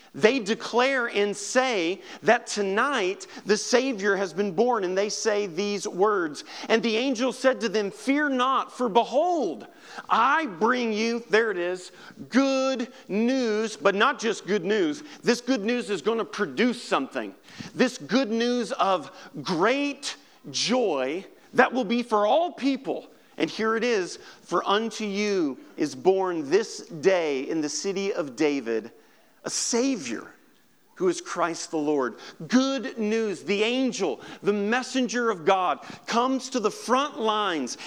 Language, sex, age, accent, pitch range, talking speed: English, male, 40-59, American, 180-255 Hz, 150 wpm